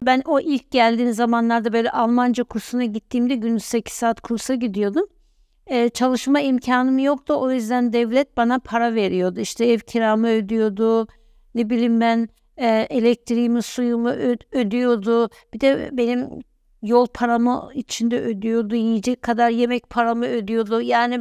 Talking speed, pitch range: 140 wpm, 225-260 Hz